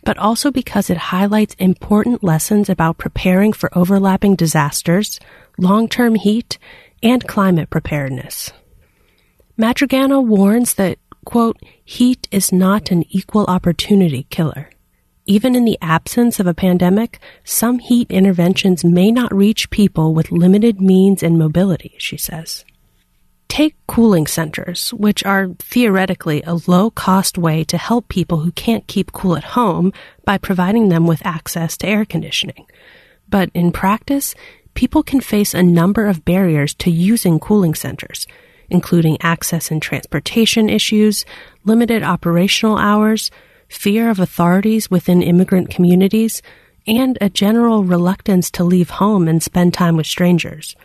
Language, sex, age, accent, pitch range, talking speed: English, female, 30-49, American, 175-220 Hz, 135 wpm